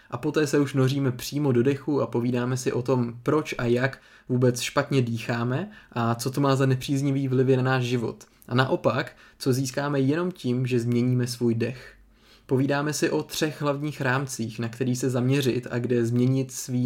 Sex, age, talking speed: male, 20-39, 190 wpm